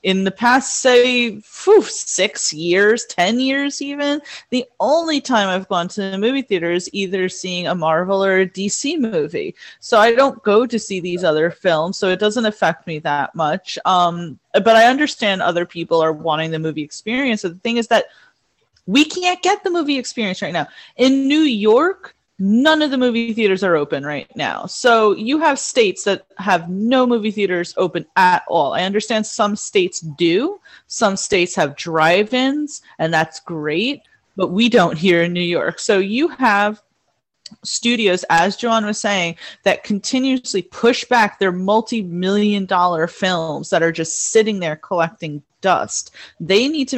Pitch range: 175-235 Hz